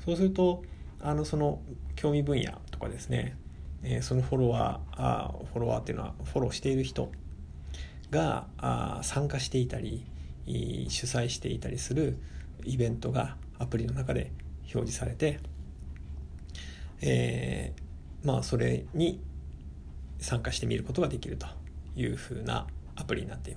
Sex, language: male, Japanese